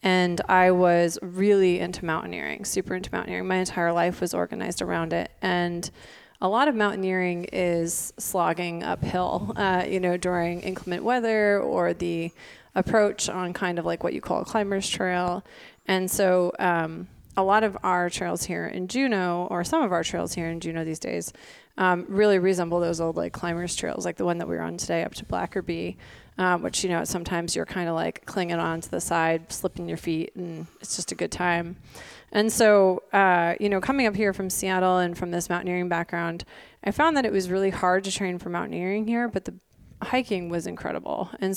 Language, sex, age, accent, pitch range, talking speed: English, female, 20-39, American, 170-195 Hz, 200 wpm